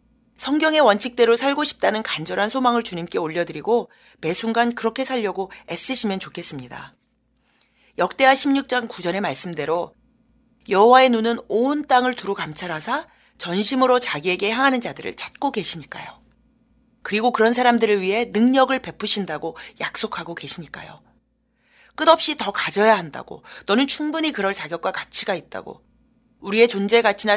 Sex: female